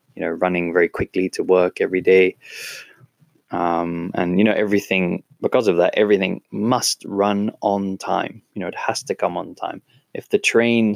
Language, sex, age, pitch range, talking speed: English, male, 20-39, 85-115 Hz, 180 wpm